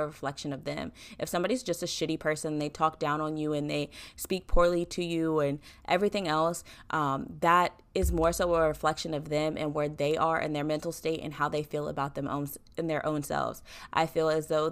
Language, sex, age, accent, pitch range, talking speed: English, female, 20-39, American, 145-160 Hz, 225 wpm